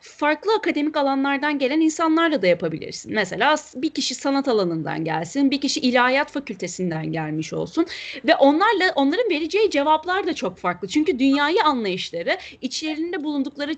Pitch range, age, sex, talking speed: 205-320 Hz, 30-49, female, 140 wpm